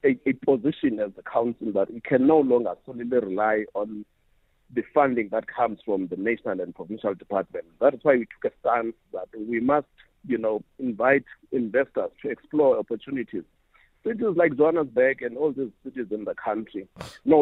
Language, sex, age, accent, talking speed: English, male, 50-69, South African, 180 wpm